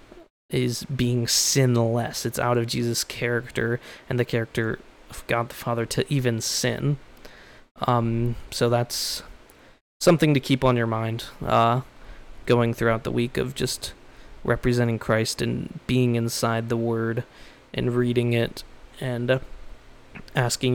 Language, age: English, 20-39